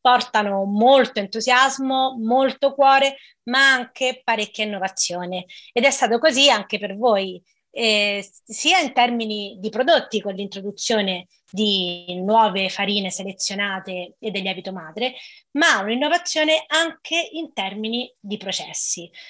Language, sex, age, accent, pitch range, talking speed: Italian, female, 20-39, native, 200-275 Hz, 120 wpm